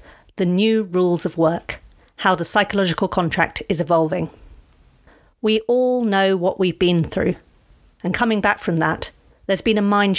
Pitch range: 175-215 Hz